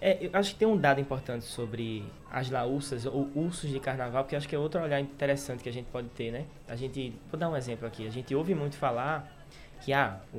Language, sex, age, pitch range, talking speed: Portuguese, male, 20-39, 125-155 Hz, 245 wpm